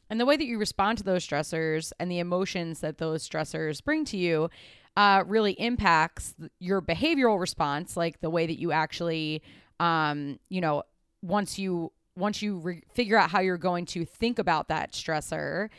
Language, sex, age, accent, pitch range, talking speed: English, female, 20-39, American, 165-205 Hz, 180 wpm